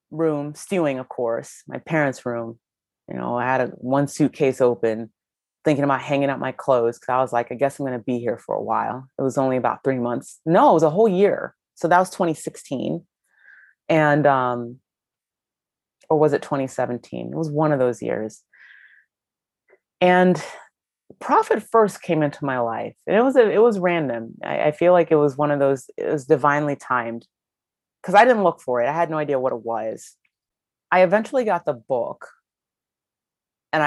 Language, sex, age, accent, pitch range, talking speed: English, female, 30-49, American, 130-165 Hz, 190 wpm